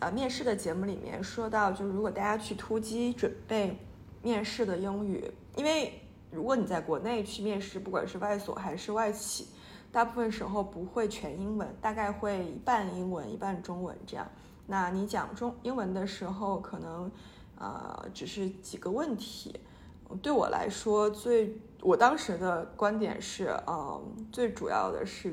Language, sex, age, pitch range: Chinese, female, 20-39, 185-225 Hz